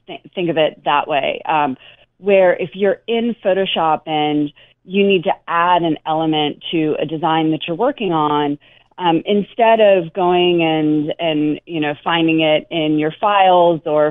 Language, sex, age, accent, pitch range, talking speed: English, female, 30-49, American, 155-200 Hz, 165 wpm